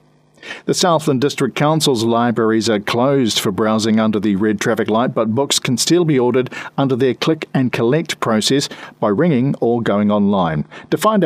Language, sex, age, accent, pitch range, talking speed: English, male, 50-69, Australian, 115-175 Hz, 175 wpm